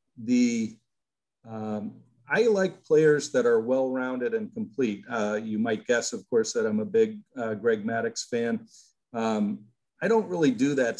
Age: 50-69